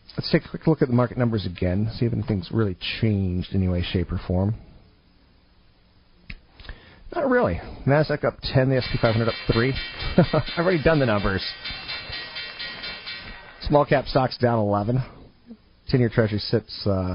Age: 40-59